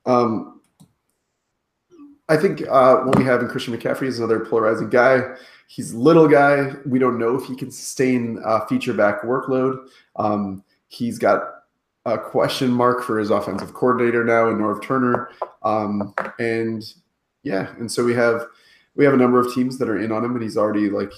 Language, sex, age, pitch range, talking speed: English, male, 20-39, 105-125 Hz, 185 wpm